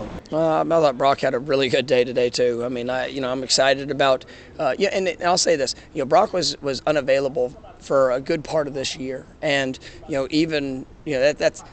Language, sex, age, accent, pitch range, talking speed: English, male, 30-49, American, 135-160 Hz, 235 wpm